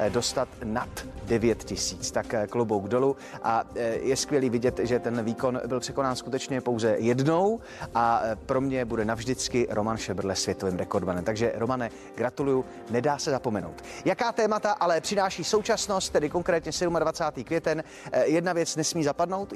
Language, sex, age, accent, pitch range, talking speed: Czech, male, 30-49, native, 130-180 Hz, 145 wpm